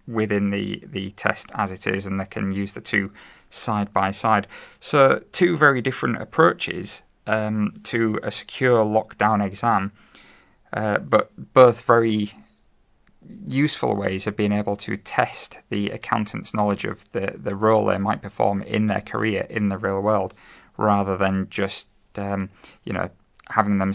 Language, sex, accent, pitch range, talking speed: English, male, British, 100-110 Hz, 160 wpm